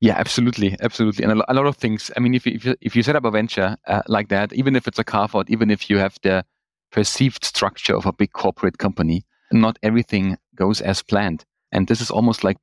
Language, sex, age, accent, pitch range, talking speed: German, male, 30-49, German, 105-120 Hz, 250 wpm